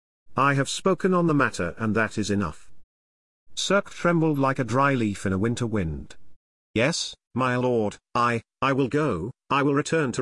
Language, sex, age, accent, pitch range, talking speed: English, male, 40-59, British, 95-140 Hz, 180 wpm